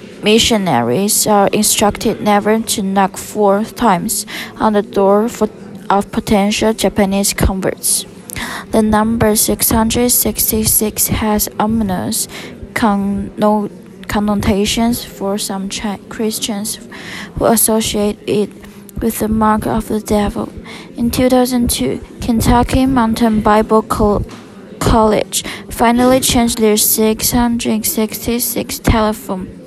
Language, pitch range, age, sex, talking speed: English, 200-225 Hz, 20-39, female, 90 wpm